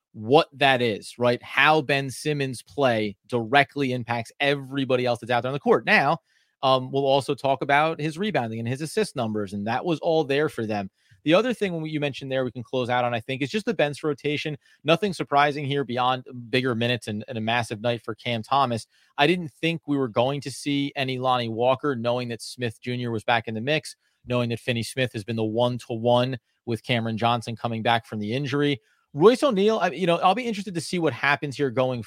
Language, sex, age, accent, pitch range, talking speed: English, male, 30-49, American, 120-155 Hz, 225 wpm